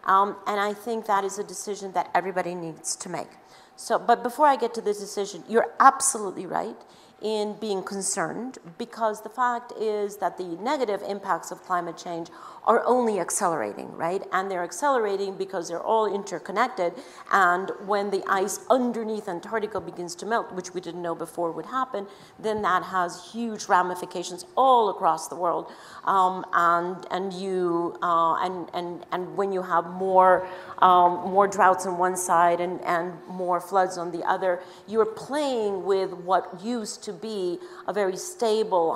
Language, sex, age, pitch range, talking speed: English, female, 40-59, 180-220 Hz, 170 wpm